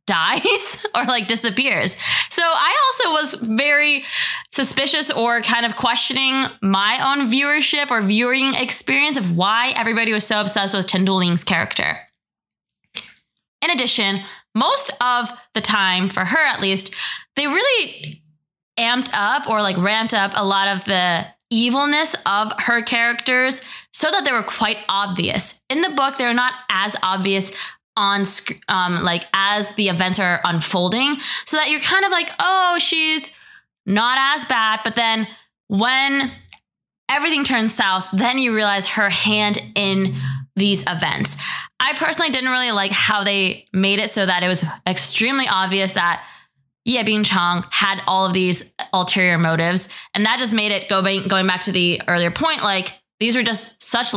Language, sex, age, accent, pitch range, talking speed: English, female, 20-39, American, 195-260 Hz, 160 wpm